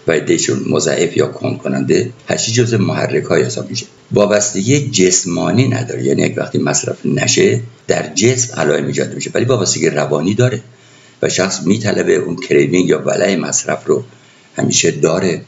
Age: 60-79